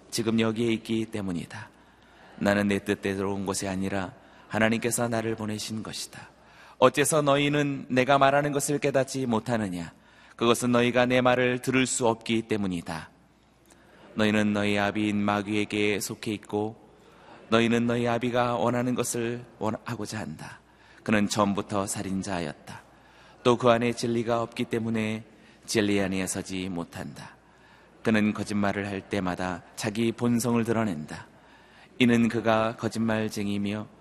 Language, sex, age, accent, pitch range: Korean, male, 30-49, native, 105-120 Hz